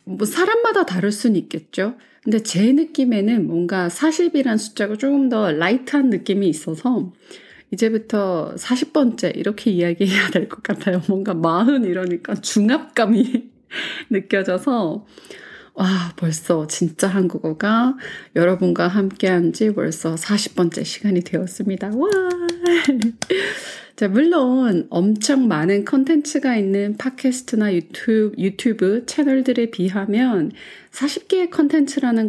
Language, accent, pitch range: Korean, native, 180-245 Hz